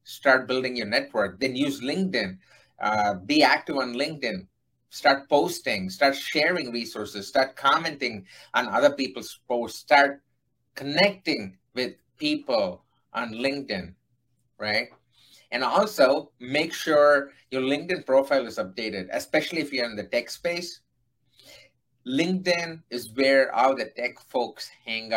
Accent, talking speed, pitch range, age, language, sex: Indian, 130 wpm, 120-140 Hz, 30-49, English, male